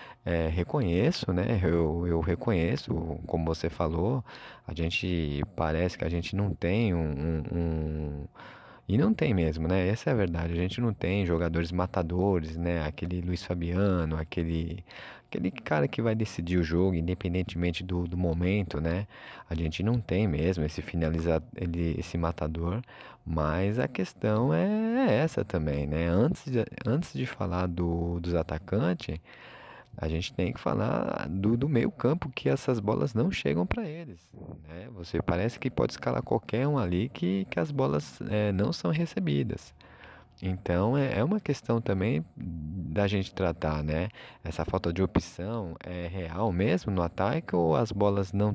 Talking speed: 160 wpm